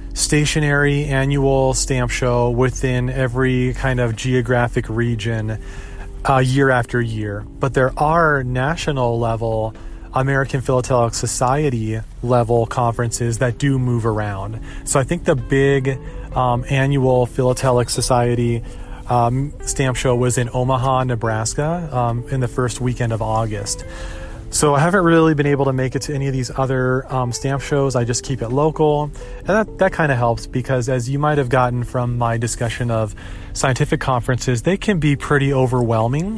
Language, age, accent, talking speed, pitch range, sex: English, 30-49, American, 160 wpm, 115-135 Hz, male